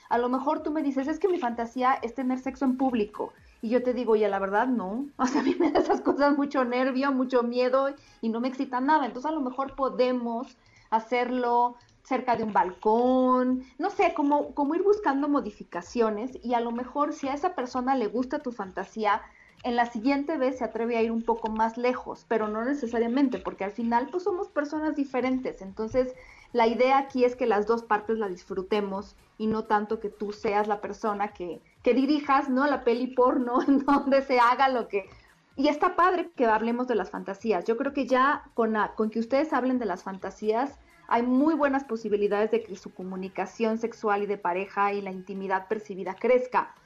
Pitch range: 215-270 Hz